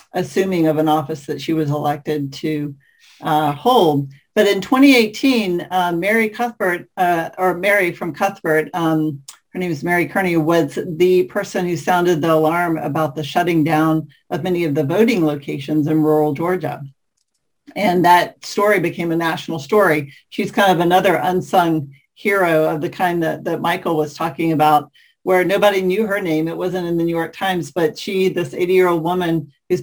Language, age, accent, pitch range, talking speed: English, 50-69, American, 155-185 Hz, 175 wpm